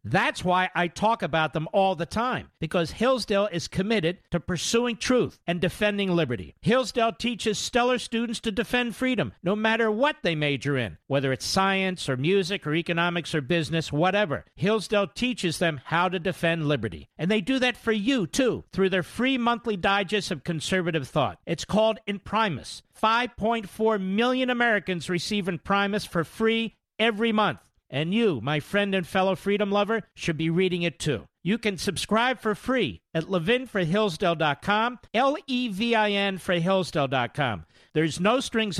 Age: 50-69